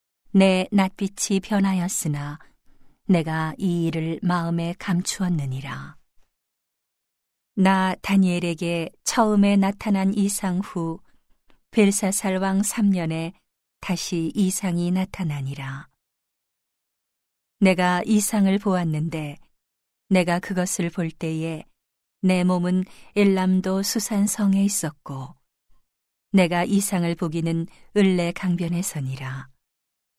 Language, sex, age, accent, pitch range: Korean, female, 40-59, native, 165-195 Hz